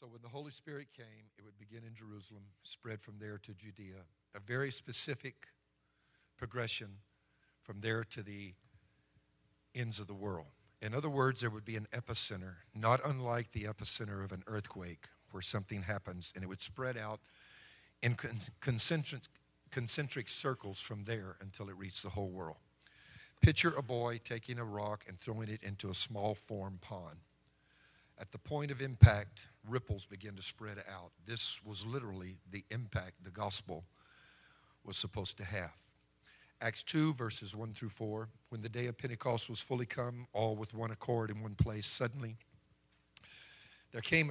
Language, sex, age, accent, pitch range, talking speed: English, male, 50-69, American, 100-125 Hz, 165 wpm